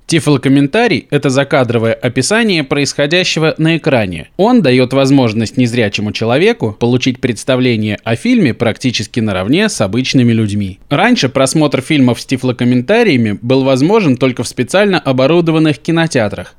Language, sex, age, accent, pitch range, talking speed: Russian, male, 20-39, native, 120-155 Hz, 120 wpm